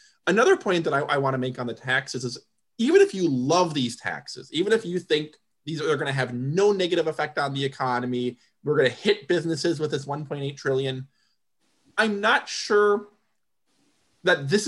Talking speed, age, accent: 180 wpm, 20-39, American